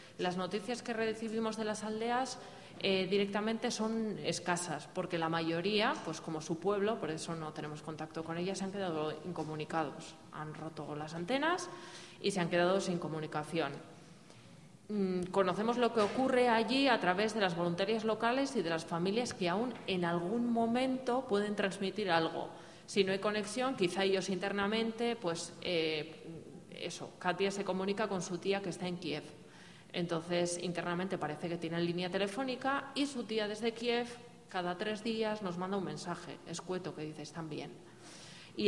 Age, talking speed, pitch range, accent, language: 20-39, 170 wpm, 170-215 Hz, Spanish, Spanish